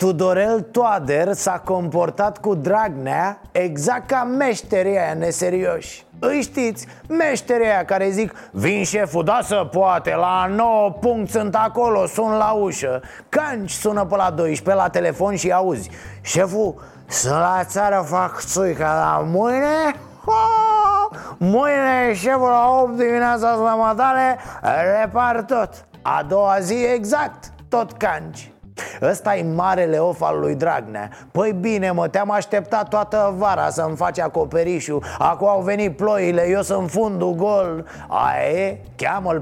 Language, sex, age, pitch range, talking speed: Romanian, male, 30-49, 170-220 Hz, 135 wpm